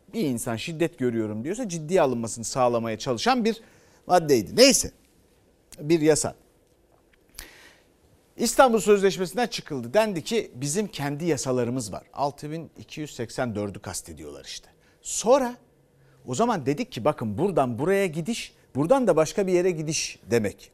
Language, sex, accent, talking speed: Turkish, male, native, 120 wpm